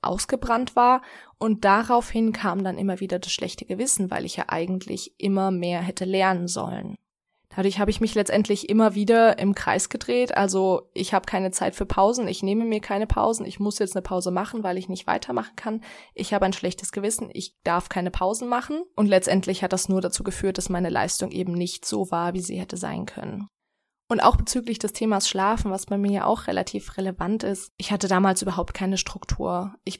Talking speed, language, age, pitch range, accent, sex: 205 wpm, German, 20-39, 185-215 Hz, German, female